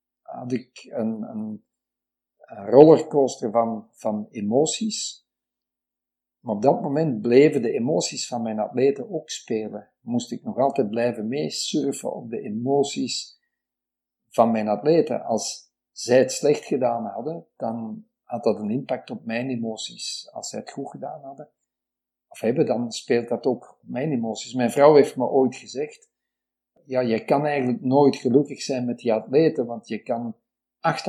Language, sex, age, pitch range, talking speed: Dutch, male, 50-69, 120-150 Hz, 160 wpm